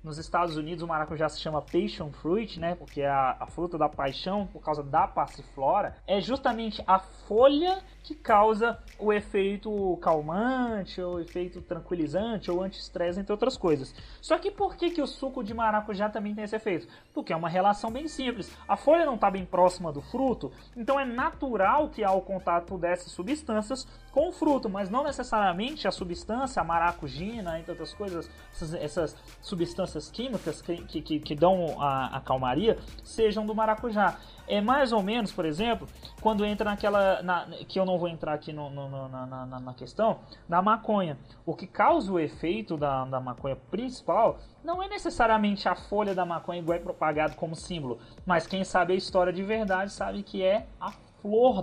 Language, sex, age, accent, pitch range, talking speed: Portuguese, male, 20-39, Brazilian, 165-220 Hz, 175 wpm